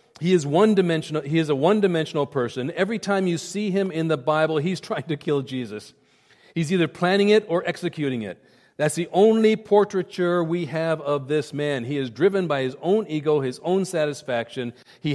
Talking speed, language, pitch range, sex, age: 195 wpm, English, 135-170 Hz, male, 40-59